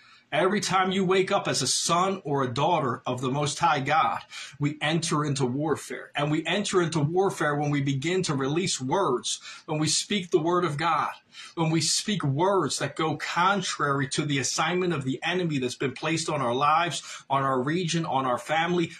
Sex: male